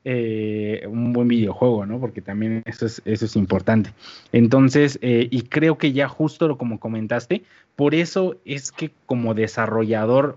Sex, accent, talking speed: male, Mexican, 160 wpm